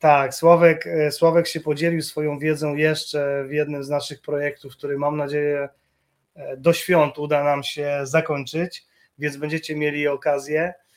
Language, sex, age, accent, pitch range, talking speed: Polish, male, 20-39, native, 145-155 Hz, 140 wpm